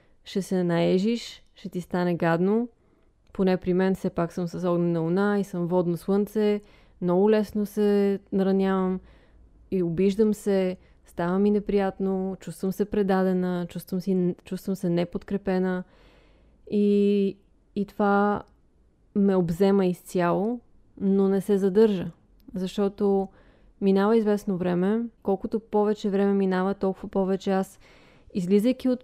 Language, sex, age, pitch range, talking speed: Bulgarian, female, 20-39, 185-205 Hz, 120 wpm